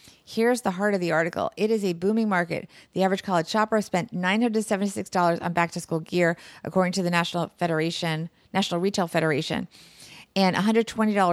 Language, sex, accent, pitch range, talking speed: English, female, American, 170-210 Hz, 160 wpm